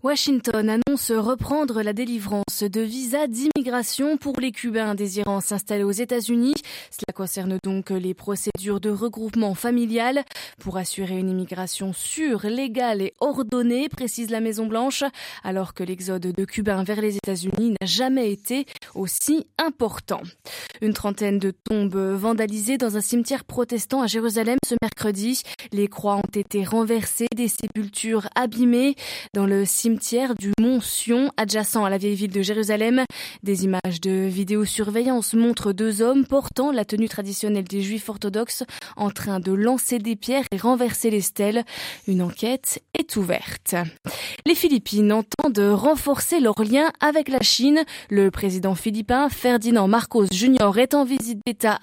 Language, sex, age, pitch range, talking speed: French, female, 20-39, 205-255 Hz, 150 wpm